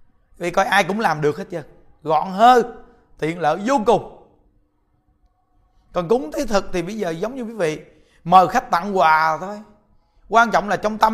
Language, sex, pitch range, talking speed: Vietnamese, male, 155-220 Hz, 190 wpm